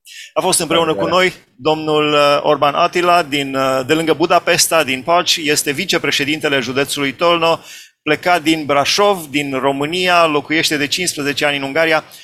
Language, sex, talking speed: Romanian, male, 135 wpm